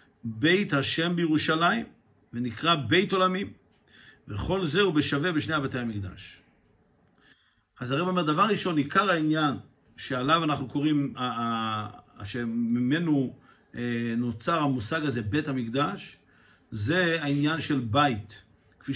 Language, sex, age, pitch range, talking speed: Hebrew, male, 50-69, 120-160 Hz, 110 wpm